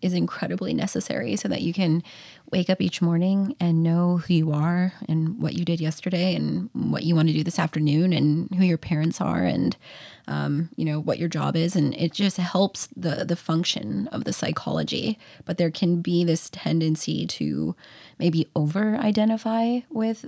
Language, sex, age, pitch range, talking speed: English, female, 20-39, 155-180 Hz, 185 wpm